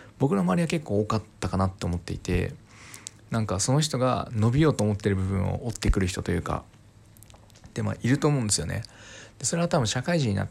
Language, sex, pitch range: Japanese, male, 100-130 Hz